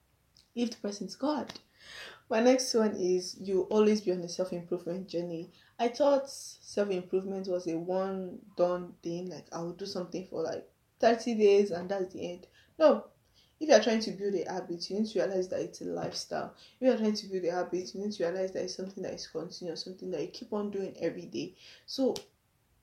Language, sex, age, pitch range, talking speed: English, female, 10-29, 175-210 Hz, 210 wpm